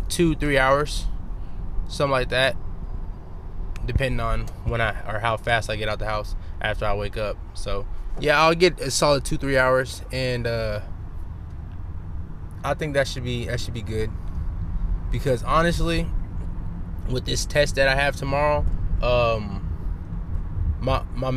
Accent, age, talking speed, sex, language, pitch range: American, 20-39, 150 wpm, male, English, 85-130 Hz